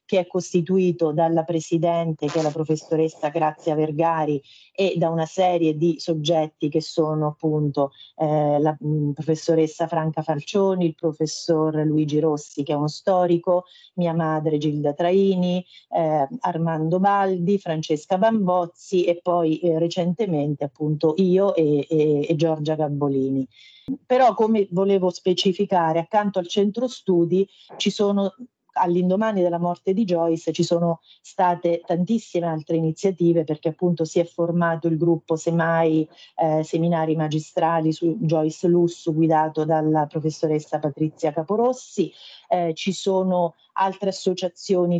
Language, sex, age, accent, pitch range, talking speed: Italian, female, 40-59, native, 155-185 Hz, 130 wpm